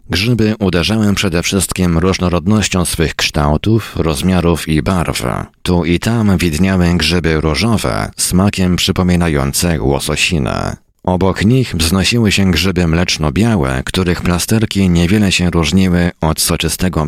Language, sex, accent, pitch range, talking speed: Polish, male, native, 80-95 Hz, 110 wpm